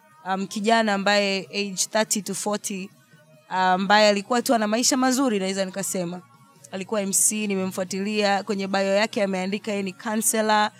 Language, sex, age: Swahili, female, 20-39